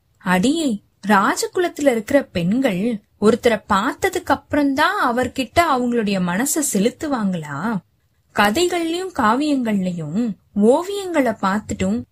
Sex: female